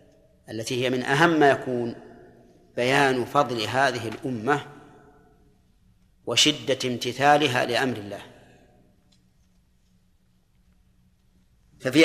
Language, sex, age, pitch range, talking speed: Arabic, male, 40-59, 120-155 Hz, 75 wpm